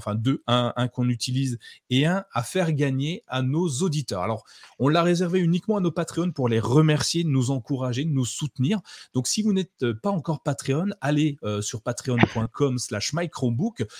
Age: 30-49